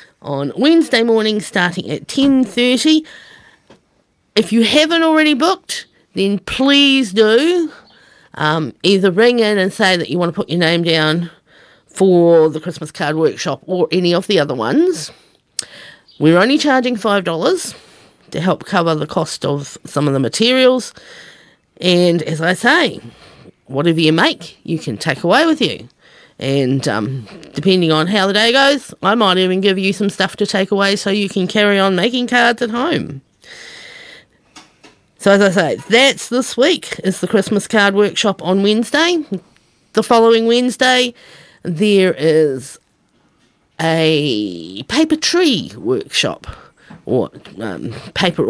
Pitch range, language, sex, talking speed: 165-245 Hz, English, female, 145 wpm